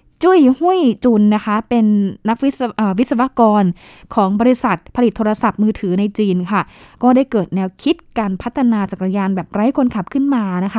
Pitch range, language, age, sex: 195-255 Hz, Thai, 20-39, female